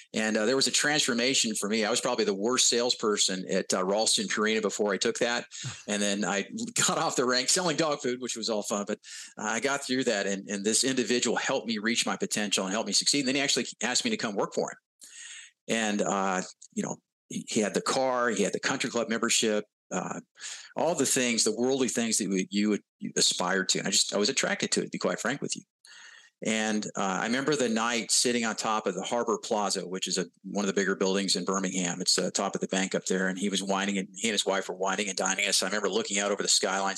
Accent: American